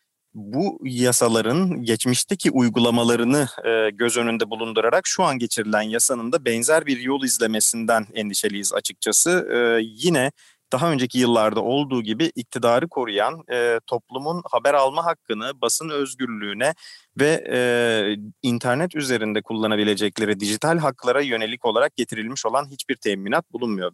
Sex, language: male, English